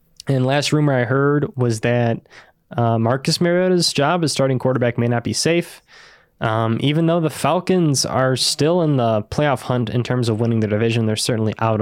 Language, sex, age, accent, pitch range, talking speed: English, male, 10-29, American, 110-135 Hz, 195 wpm